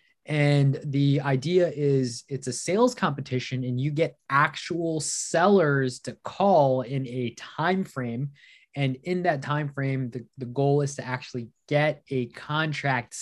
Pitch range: 120-150 Hz